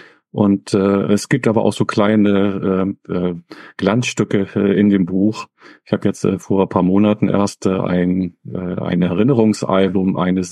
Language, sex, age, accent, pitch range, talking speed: German, male, 40-59, German, 95-110 Hz, 170 wpm